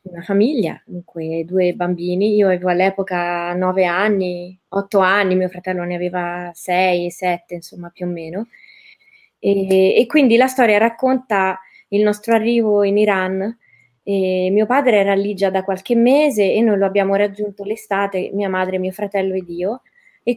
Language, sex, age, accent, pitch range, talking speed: Italian, female, 20-39, native, 180-220 Hz, 160 wpm